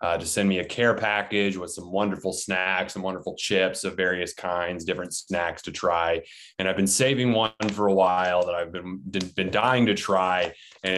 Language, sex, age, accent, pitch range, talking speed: English, male, 20-39, American, 95-110 Hz, 200 wpm